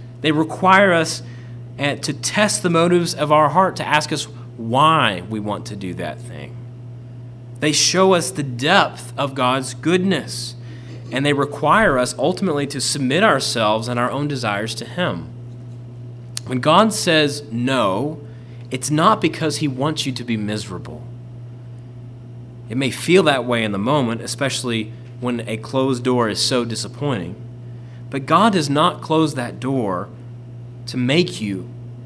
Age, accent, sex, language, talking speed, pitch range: 30-49, American, male, English, 150 wpm, 120-145 Hz